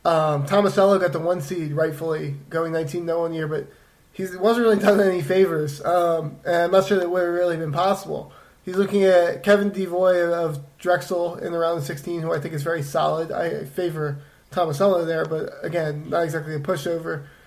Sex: male